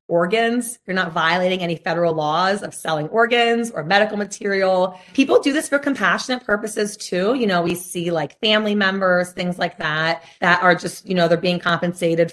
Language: English